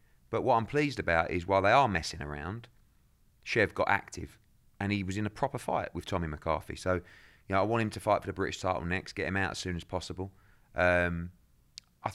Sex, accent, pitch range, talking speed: male, British, 85-105 Hz, 225 wpm